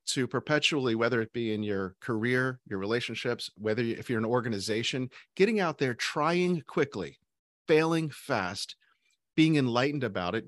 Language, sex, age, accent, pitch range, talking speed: English, male, 40-59, American, 105-140 Hz, 155 wpm